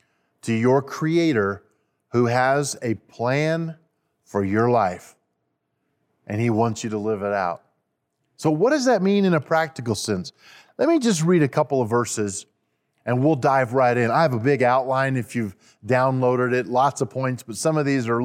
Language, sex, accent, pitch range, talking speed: English, male, American, 115-155 Hz, 185 wpm